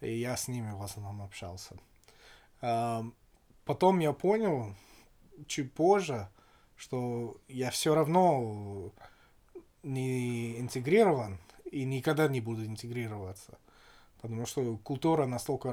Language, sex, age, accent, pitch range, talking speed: Russian, male, 20-39, native, 110-135 Hz, 105 wpm